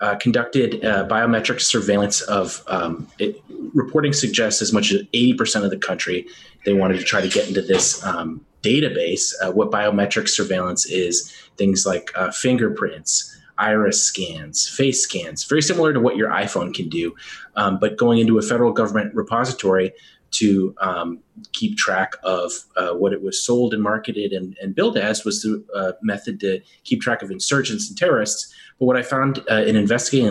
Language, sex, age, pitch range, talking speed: English, male, 30-49, 95-120 Hz, 175 wpm